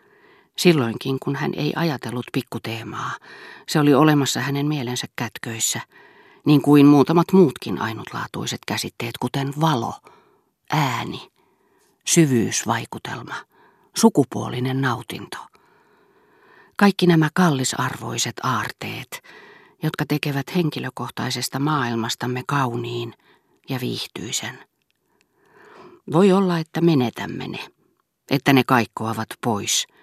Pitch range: 120-155 Hz